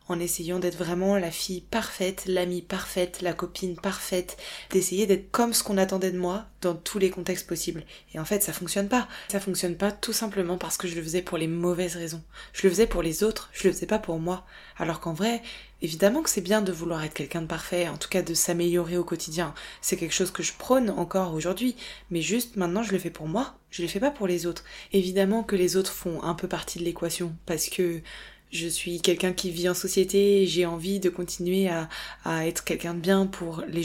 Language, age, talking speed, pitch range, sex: French, 20-39, 235 wpm, 170-195 Hz, female